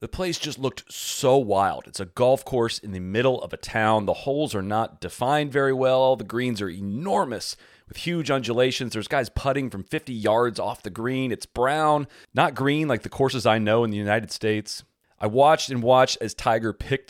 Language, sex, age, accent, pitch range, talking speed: English, male, 30-49, American, 100-125 Hz, 205 wpm